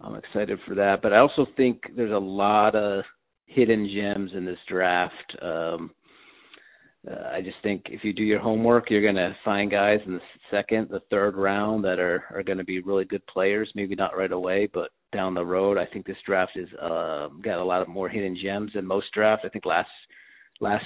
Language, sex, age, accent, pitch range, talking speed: English, male, 40-59, American, 95-110 Hz, 215 wpm